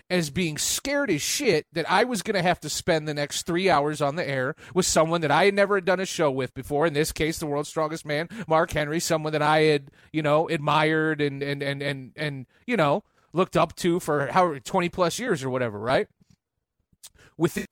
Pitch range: 145-180 Hz